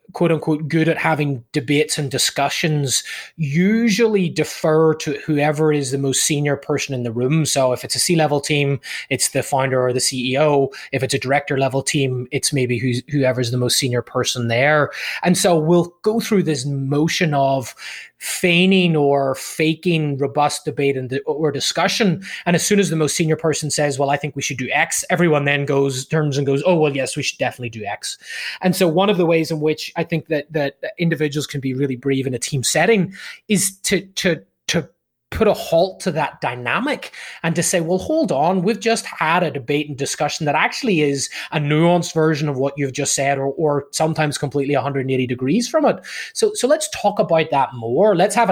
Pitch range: 135-165 Hz